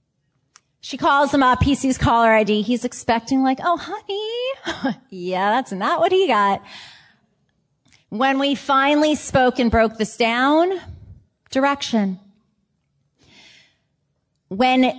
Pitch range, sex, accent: 190-255 Hz, female, American